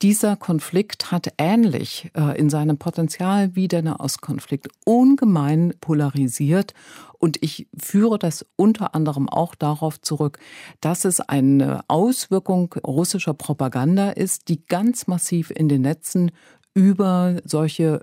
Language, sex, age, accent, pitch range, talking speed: German, female, 50-69, German, 150-180 Hz, 120 wpm